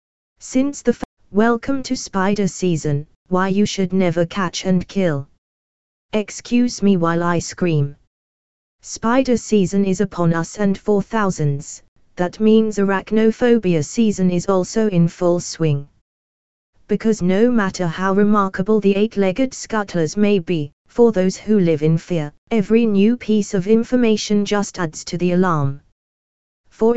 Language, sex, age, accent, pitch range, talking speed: English, female, 20-39, British, 165-210 Hz, 140 wpm